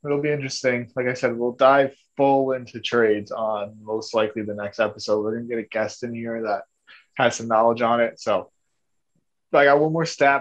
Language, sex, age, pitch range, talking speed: English, male, 20-39, 115-135 Hz, 215 wpm